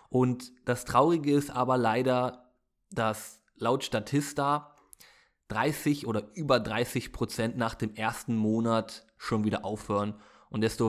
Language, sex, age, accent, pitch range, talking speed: German, male, 20-39, German, 110-140 Hz, 120 wpm